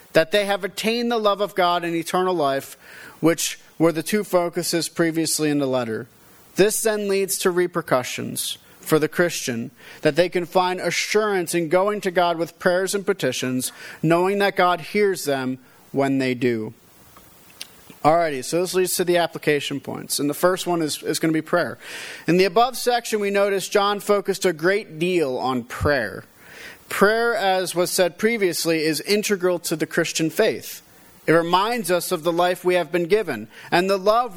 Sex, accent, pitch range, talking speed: male, American, 160-205 Hz, 180 wpm